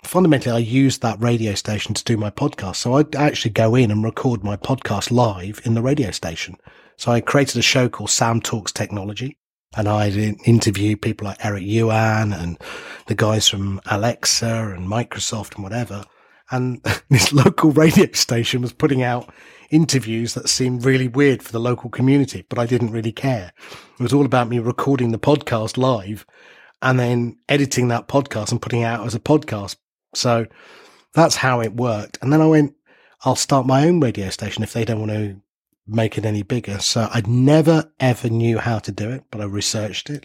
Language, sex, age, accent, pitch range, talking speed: English, male, 30-49, British, 110-130 Hz, 190 wpm